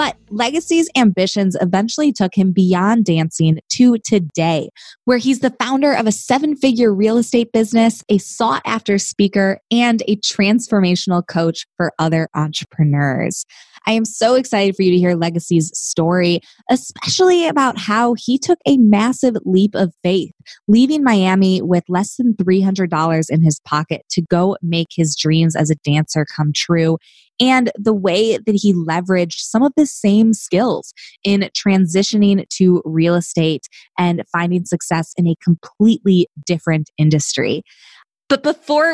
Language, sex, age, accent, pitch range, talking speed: English, female, 20-39, American, 170-240 Hz, 145 wpm